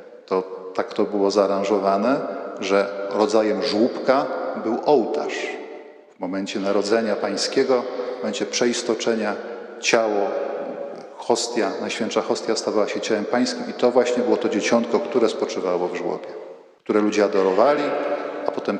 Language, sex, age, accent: Polish, male, 40-59, native